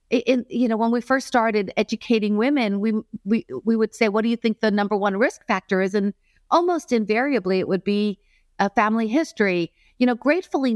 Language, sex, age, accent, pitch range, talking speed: English, female, 50-69, American, 200-245 Hz, 195 wpm